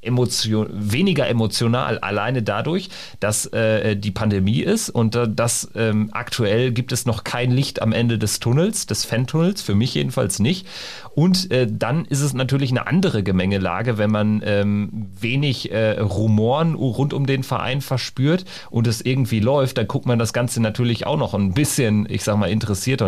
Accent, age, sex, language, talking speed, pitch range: German, 40-59, male, German, 175 wpm, 100-125 Hz